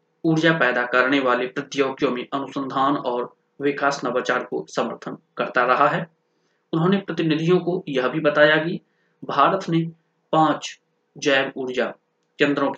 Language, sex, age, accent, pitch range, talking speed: Hindi, male, 30-49, native, 130-160 Hz, 80 wpm